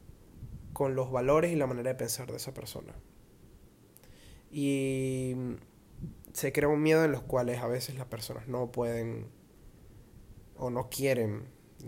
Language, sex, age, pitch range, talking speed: Spanish, male, 20-39, 115-140 Hz, 145 wpm